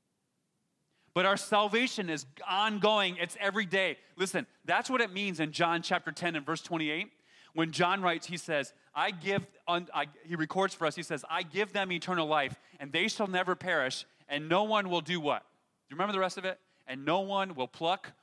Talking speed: 200 wpm